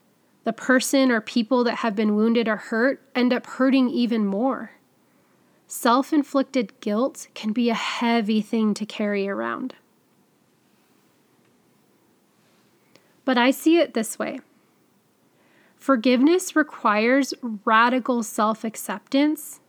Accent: American